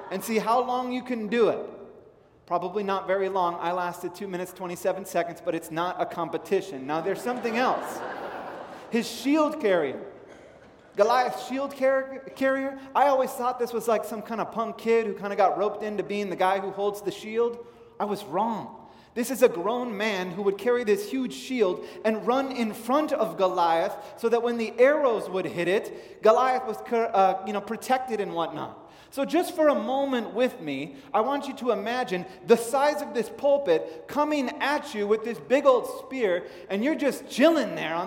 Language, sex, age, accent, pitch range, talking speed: English, male, 30-49, American, 195-260 Hz, 195 wpm